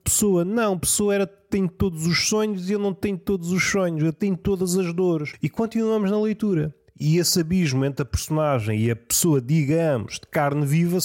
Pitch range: 145-200 Hz